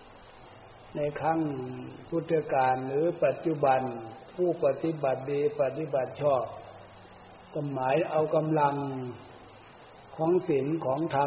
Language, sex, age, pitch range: Thai, male, 60-79, 130-160 Hz